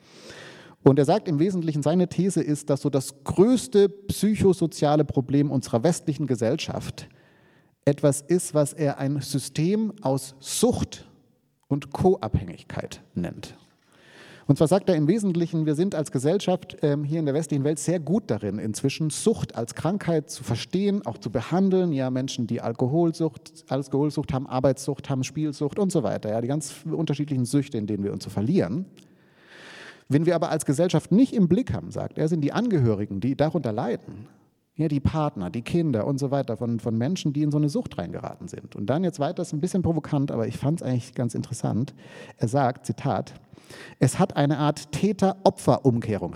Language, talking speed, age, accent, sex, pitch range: German, 175 wpm, 30-49, German, male, 135-170 Hz